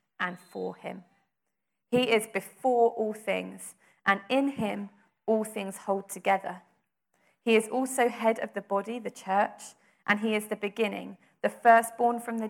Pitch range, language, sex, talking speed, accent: 185-230 Hz, English, female, 160 wpm, British